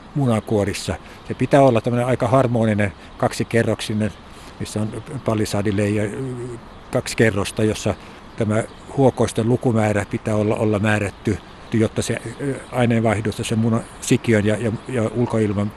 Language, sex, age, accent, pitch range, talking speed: Finnish, male, 60-79, native, 105-125 Hz, 115 wpm